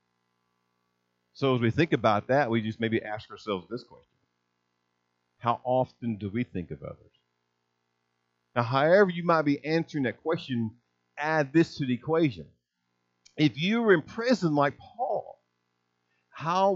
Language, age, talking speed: English, 50-69, 145 wpm